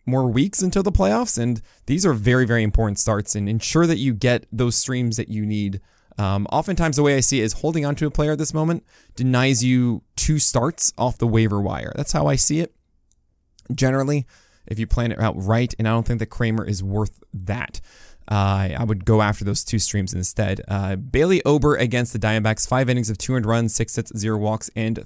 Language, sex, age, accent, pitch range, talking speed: English, male, 20-39, American, 110-140 Hz, 225 wpm